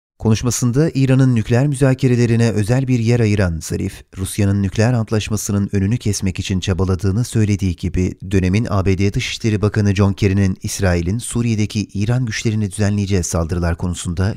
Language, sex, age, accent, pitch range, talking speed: Turkish, male, 30-49, native, 95-115 Hz, 130 wpm